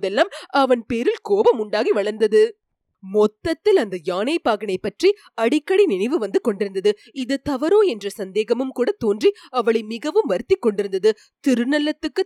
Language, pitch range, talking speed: Tamil, 205-325 Hz, 125 wpm